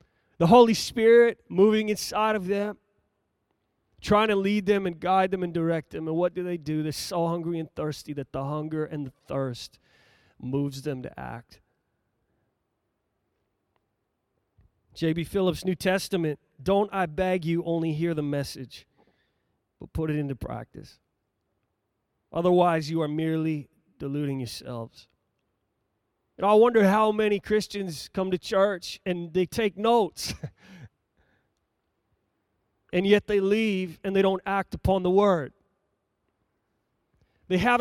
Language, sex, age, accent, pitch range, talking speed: English, male, 30-49, American, 130-200 Hz, 135 wpm